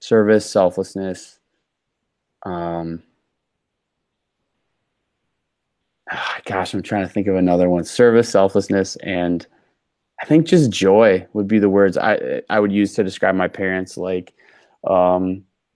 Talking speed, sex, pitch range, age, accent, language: 120 wpm, male, 90-105 Hz, 20-39, American, English